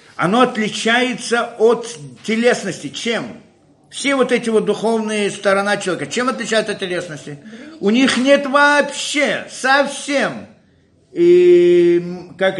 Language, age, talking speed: Russian, 50-69, 110 wpm